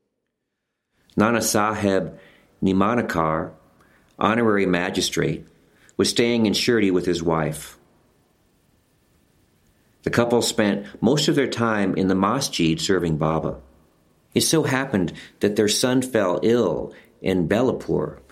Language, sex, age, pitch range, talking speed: English, male, 50-69, 85-110 Hz, 110 wpm